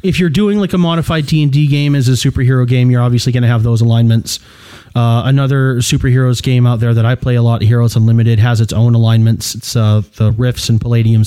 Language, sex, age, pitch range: English, male, 30-49, 110-150 Hz